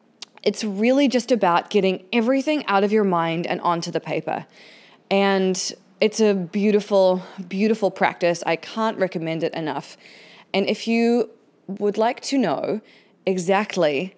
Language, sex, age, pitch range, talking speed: English, female, 20-39, 170-215 Hz, 140 wpm